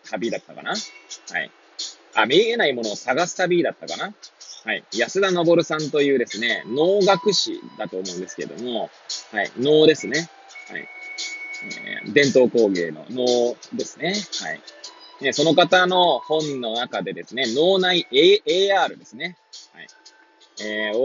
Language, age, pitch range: Japanese, 20-39, 120-195 Hz